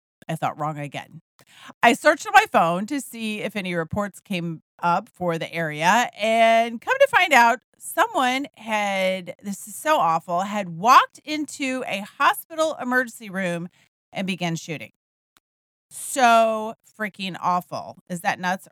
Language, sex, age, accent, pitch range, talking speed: English, female, 40-59, American, 175-255 Hz, 145 wpm